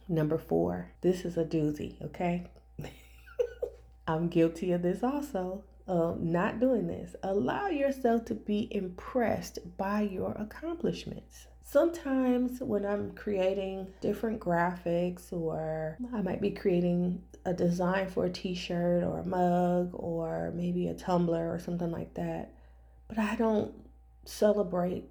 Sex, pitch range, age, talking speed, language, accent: female, 170-210 Hz, 30-49, 130 wpm, English, American